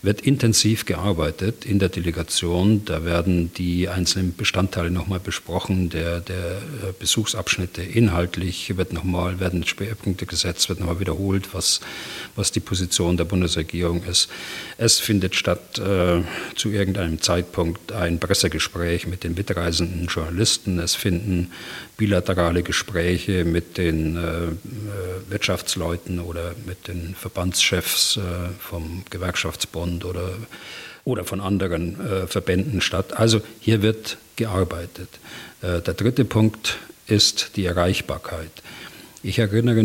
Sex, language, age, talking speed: male, German, 40-59, 125 wpm